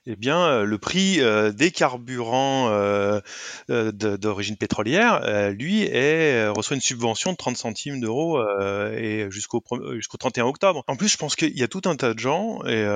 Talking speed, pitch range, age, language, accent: 145 wpm, 110-145 Hz, 20-39, French, French